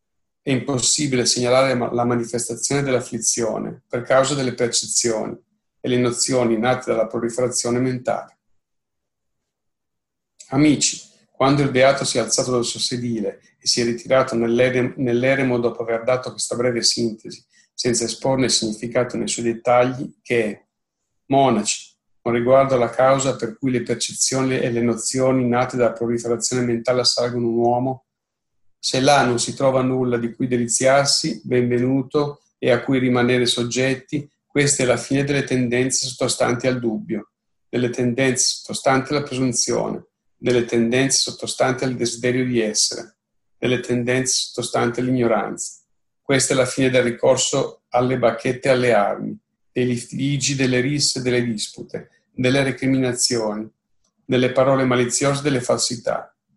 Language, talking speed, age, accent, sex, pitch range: Italian, 140 wpm, 40-59, native, male, 120-130 Hz